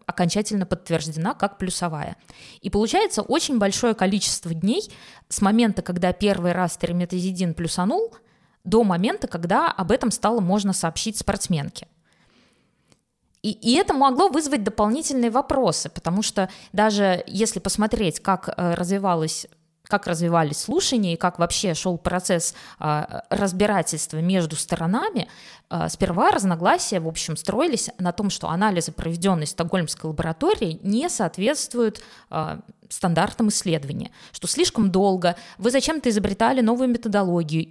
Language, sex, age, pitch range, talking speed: Russian, female, 20-39, 175-220 Hz, 120 wpm